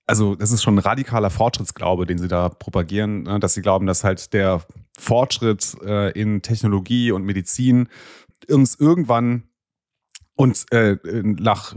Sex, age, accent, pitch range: male, 30-49, German, 100-125 Hz